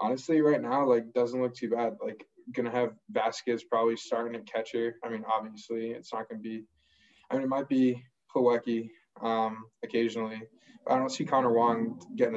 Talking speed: 195 wpm